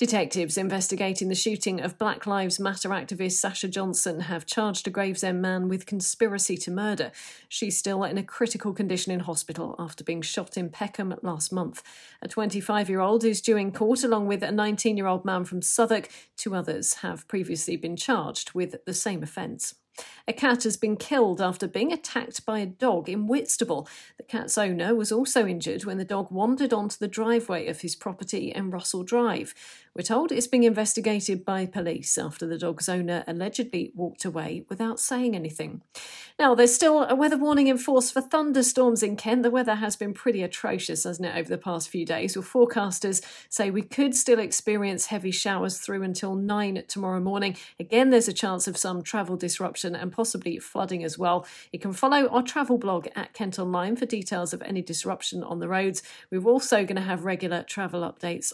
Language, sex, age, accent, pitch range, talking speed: English, female, 40-59, British, 180-225 Hz, 190 wpm